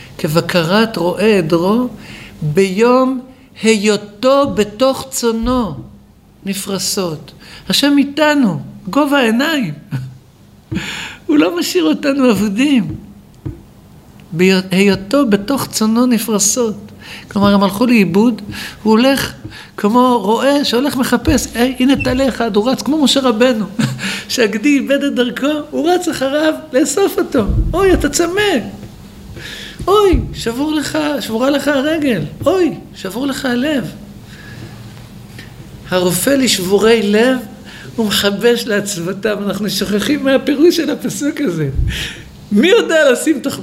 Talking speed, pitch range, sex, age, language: 105 wpm, 190-270 Hz, male, 60-79, Hebrew